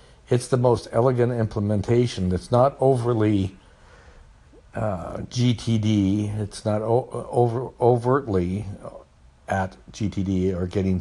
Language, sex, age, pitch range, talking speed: English, male, 60-79, 90-110 Hz, 105 wpm